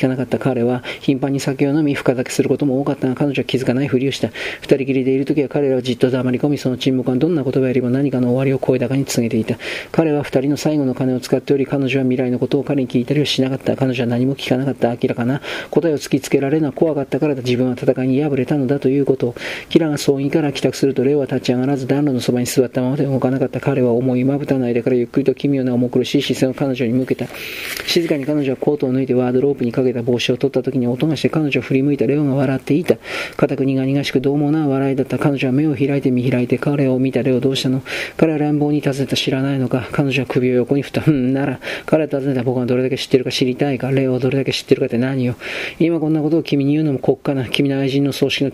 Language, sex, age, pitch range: Japanese, male, 40-59, 130-140 Hz